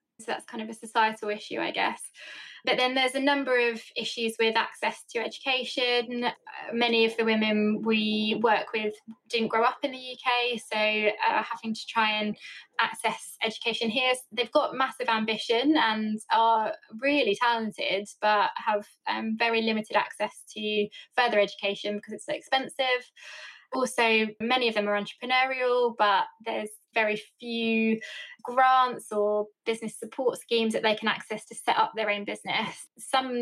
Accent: British